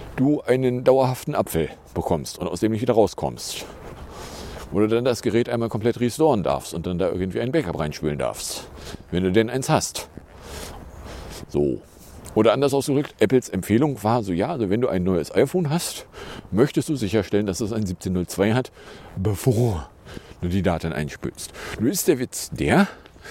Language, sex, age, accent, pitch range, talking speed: English, male, 50-69, German, 90-125 Hz, 170 wpm